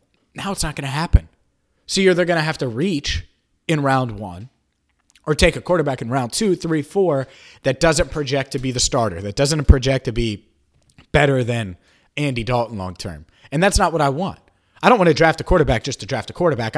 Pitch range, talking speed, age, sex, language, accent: 115-150 Hz, 220 wpm, 30-49, male, English, American